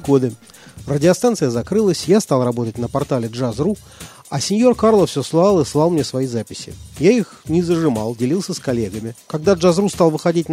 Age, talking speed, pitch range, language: 40-59, 170 wpm, 130-175 Hz, Russian